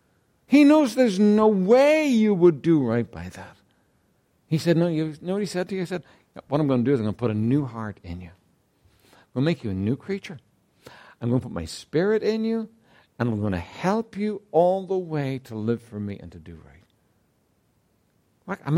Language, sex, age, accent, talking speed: English, male, 60-79, American, 230 wpm